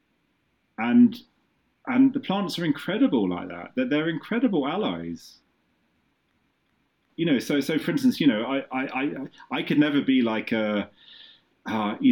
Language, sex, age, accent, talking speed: English, male, 30-49, British, 155 wpm